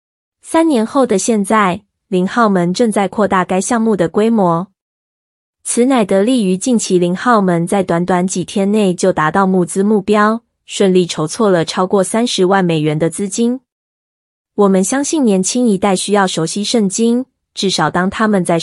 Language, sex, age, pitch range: Chinese, female, 20-39, 175-215 Hz